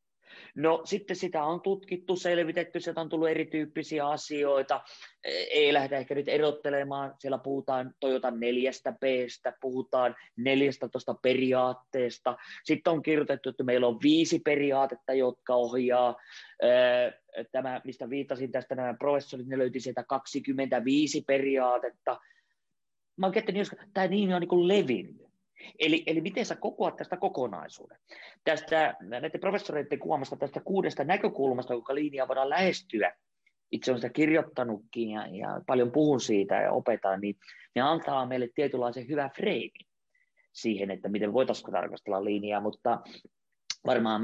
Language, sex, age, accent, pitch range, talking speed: Finnish, male, 30-49, native, 125-160 Hz, 130 wpm